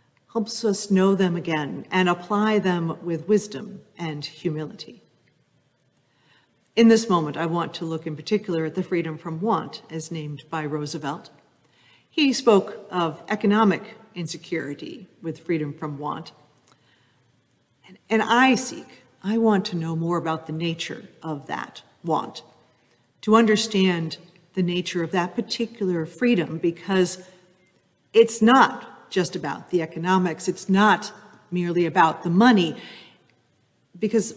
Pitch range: 165-210 Hz